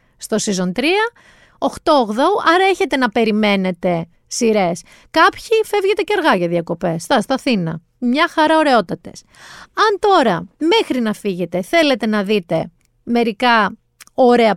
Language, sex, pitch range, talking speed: Greek, female, 200-320 Hz, 130 wpm